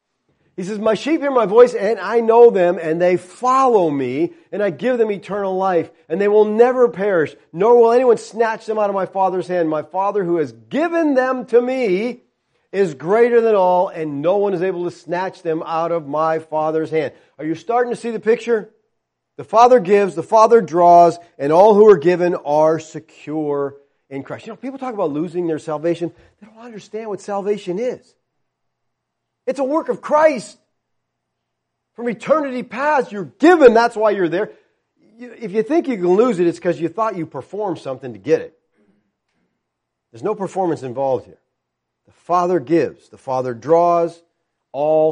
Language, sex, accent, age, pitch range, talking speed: English, male, American, 40-59, 150-220 Hz, 185 wpm